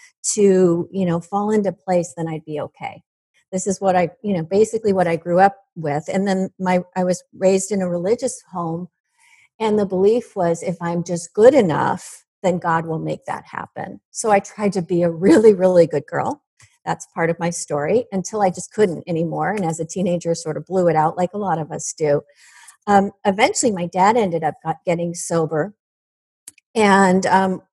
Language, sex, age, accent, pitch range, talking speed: English, female, 40-59, American, 170-200 Hz, 200 wpm